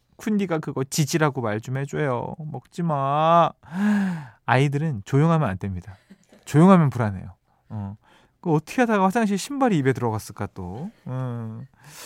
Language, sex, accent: Korean, male, native